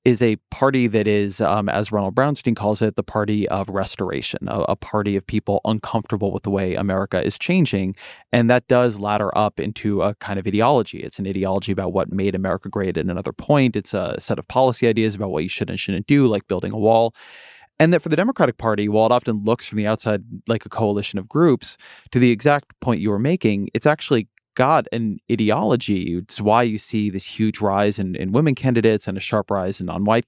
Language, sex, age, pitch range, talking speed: English, male, 30-49, 100-120 Hz, 220 wpm